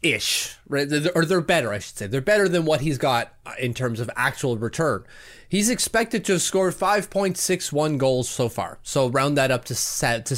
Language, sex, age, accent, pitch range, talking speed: English, male, 30-49, American, 130-205 Hz, 195 wpm